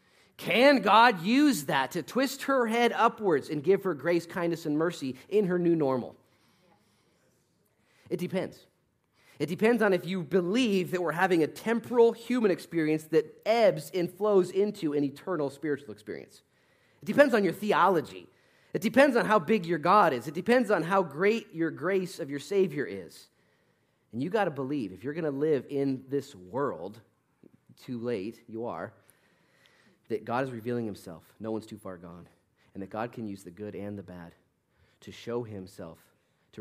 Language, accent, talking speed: English, American, 180 wpm